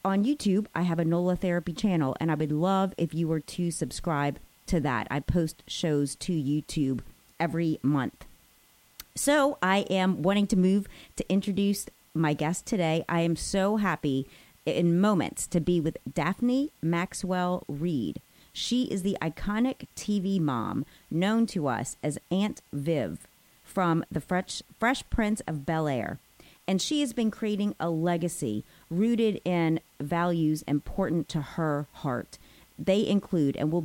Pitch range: 155-195 Hz